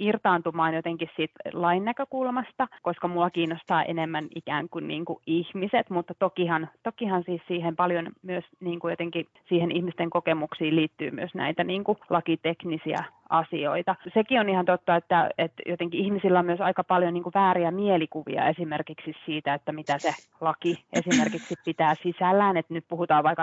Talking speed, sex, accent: 140 wpm, female, native